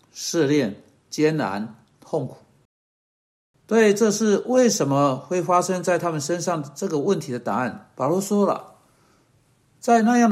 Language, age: Chinese, 60-79